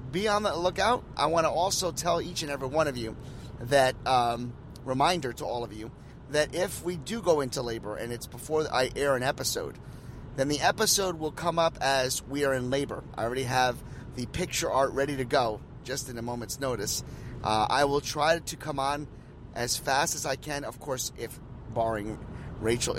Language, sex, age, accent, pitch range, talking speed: English, male, 30-49, American, 115-140 Hz, 205 wpm